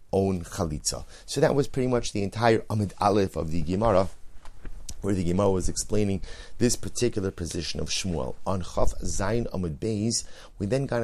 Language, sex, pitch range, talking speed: English, male, 90-110 Hz, 175 wpm